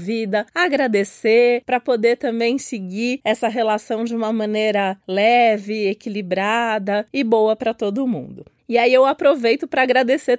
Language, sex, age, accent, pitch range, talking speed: Portuguese, female, 20-39, Brazilian, 230-275 Hz, 140 wpm